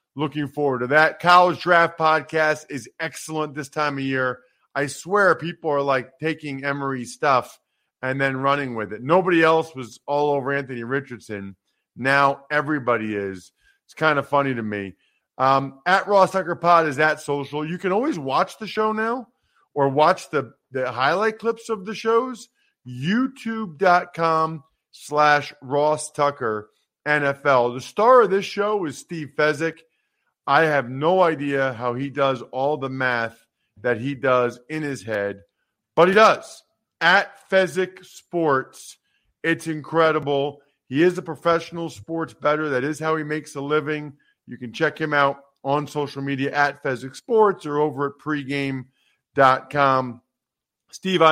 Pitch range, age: 135-170 Hz, 40-59